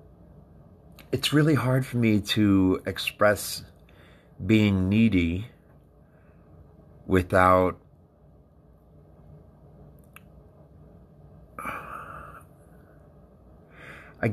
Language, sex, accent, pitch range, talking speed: English, male, American, 80-105 Hz, 45 wpm